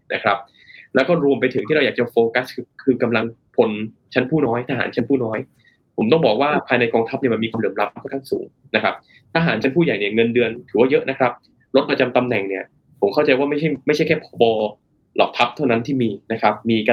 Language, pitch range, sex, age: Thai, 115-145 Hz, male, 20-39